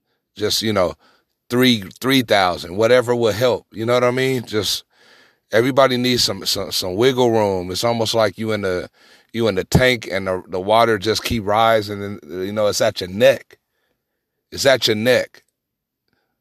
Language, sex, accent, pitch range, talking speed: English, male, American, 110-135 Hz, 185 wpm